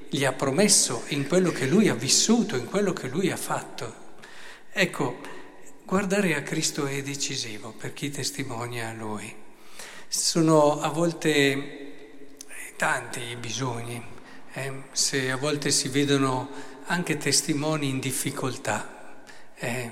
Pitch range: 125-155 Hz